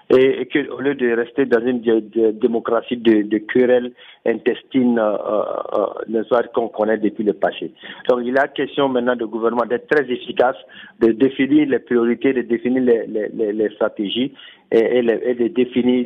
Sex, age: male, 50-69